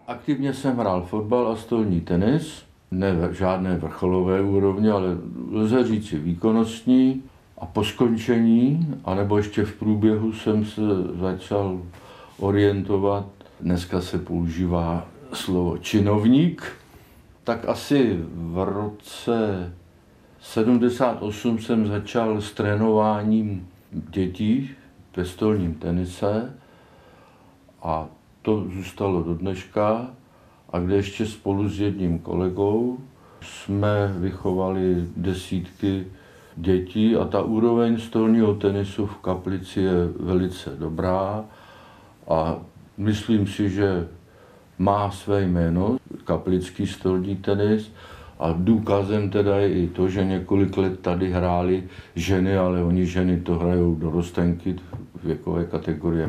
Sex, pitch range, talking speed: male, 90-110 Hz, 110 wpm